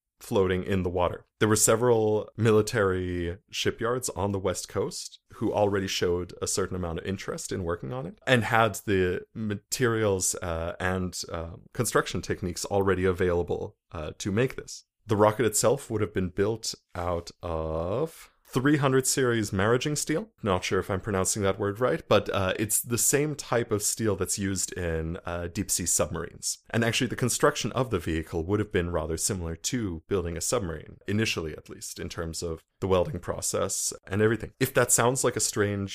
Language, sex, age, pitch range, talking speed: English, male, 30-49, 90-110 Hz, 180 wpm